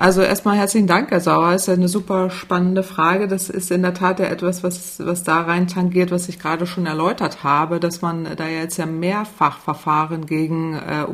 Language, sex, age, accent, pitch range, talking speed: German, female, 30-49, German, 160-180 Hz, 210 wpm